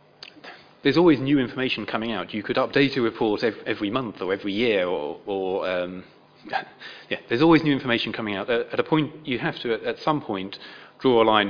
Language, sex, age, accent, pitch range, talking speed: English, male, 30-49, British, 105-130 Hz, 200 wpm